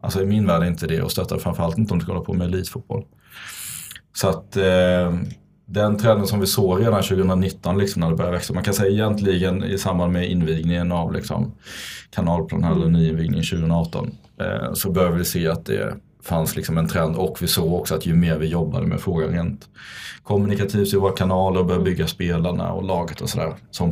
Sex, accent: male, native